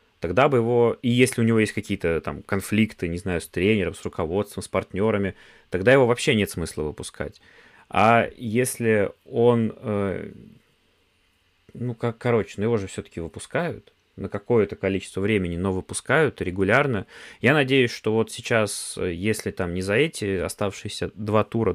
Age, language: 20-39, Russian